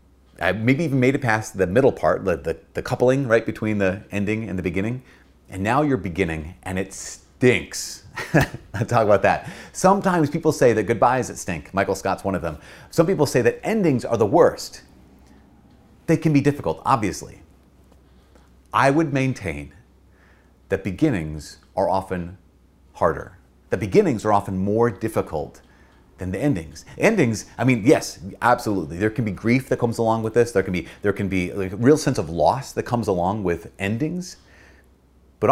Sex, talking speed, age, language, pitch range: male, 175 wpm, 30-49, English, 90-125 Hz